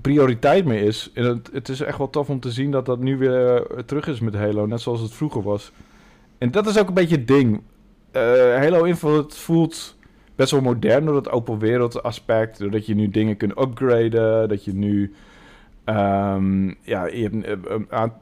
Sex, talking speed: male, 200 wpm